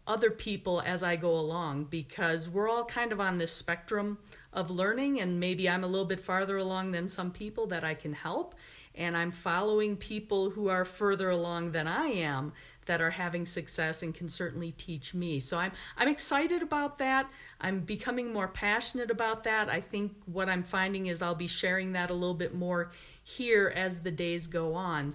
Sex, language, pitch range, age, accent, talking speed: female, English, 175-220 Hz, 40-59, American, 200 wpm